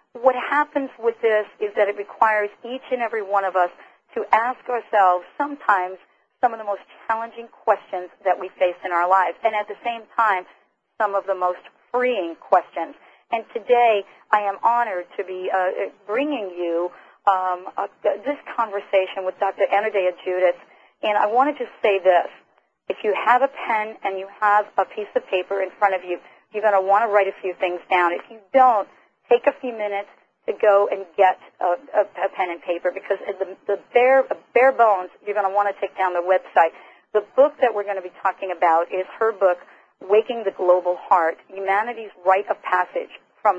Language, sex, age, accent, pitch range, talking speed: English, female, 40-59, American, 190-230 Hz, 195 wpm